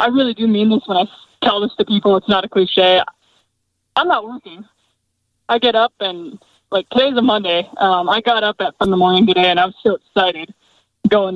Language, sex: English, male